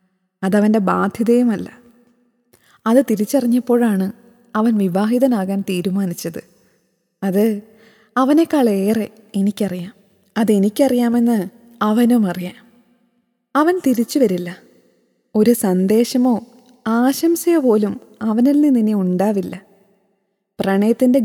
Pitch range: 200-245 Hz